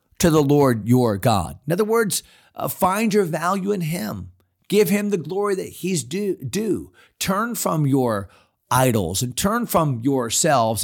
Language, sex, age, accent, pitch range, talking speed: English, male, 40-59, American, 125-165 Hz, 165 wpm